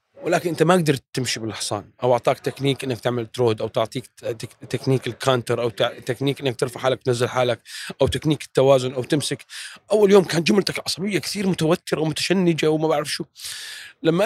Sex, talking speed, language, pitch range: male, 170 wpm, Arabic, 130-175 Hz